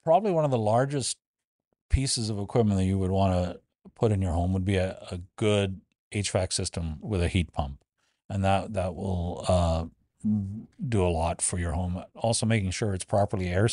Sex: male